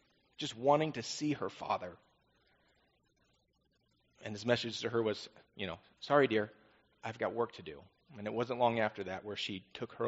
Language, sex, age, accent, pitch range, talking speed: English, male, 30-49, American, 105-130 Hz, 185 wpm